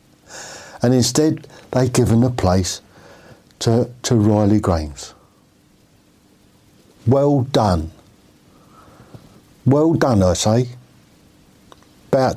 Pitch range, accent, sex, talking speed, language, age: 95-120 Hz, British, male, 80 wpm, English, 60-79